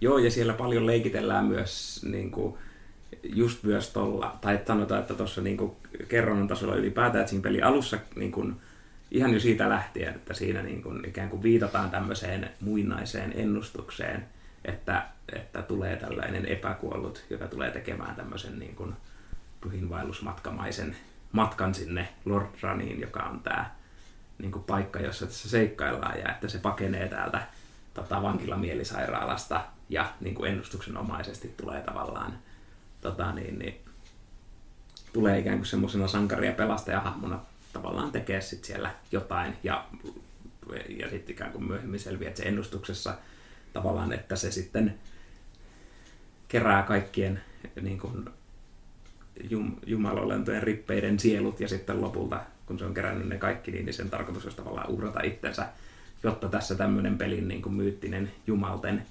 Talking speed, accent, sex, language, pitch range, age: 135 wpm, native, male, Finnish, 95-110 Hz, 30-49